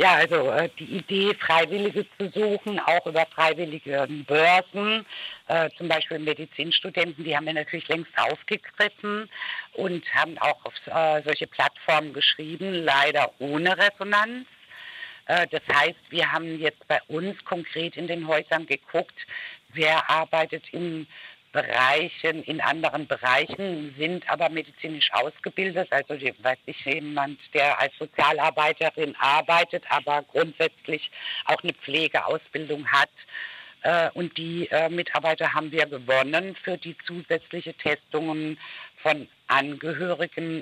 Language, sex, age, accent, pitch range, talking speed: German, female, 60-79, German, 150-180 Hz, 125 wpm